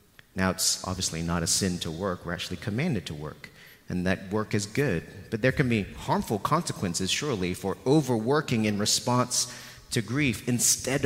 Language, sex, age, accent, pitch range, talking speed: English, male, 30-49, American, 95-120 Hz, 175 wpm